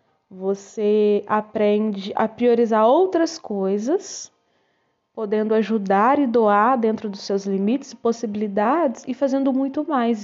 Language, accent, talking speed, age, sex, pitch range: Portuguese, Brazilian, 115 wpm, 20-39, female, 195-240 Hz